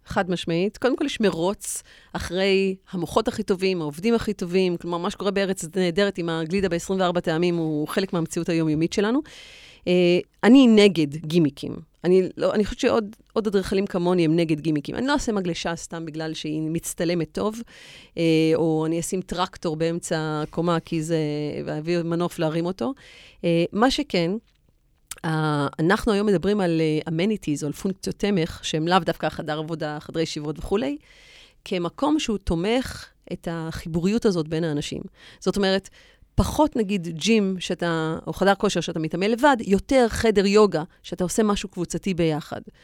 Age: 30-49